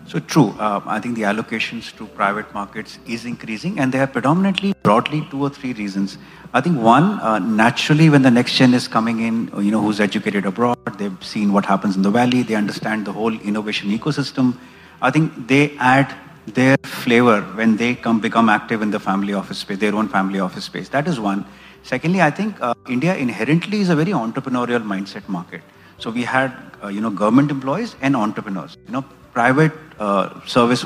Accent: Indian